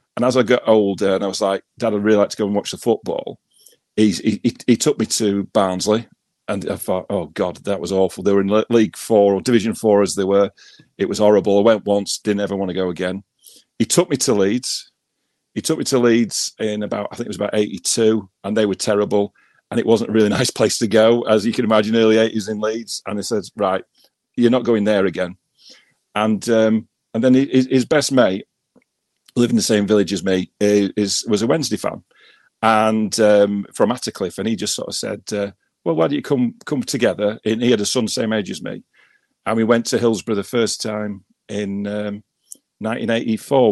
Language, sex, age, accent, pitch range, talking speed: English, male, 40-59, British, 100-115 Hz, 225 wpm